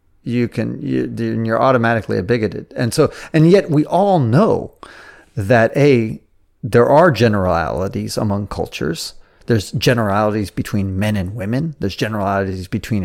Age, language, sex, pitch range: 40-59, English, male, 105-140 Hz